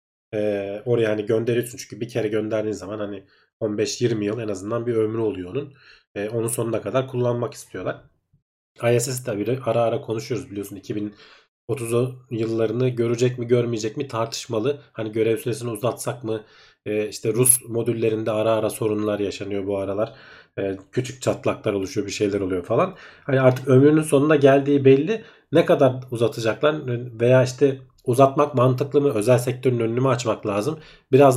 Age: 40-59